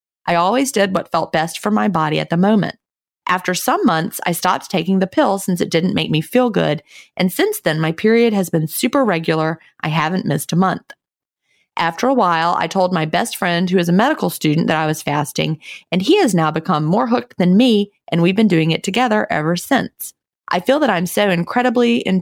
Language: English